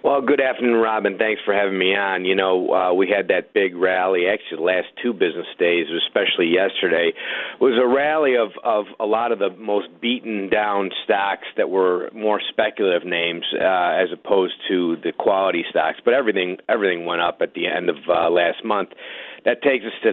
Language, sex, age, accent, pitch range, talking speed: English, male, 50-69, American, 95-120 Hz, 195 wpm